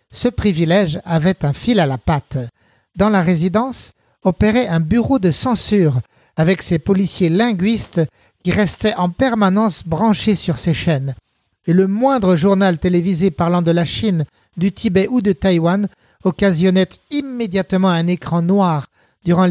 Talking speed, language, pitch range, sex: 150 wpm, French, 165-215 Hz, male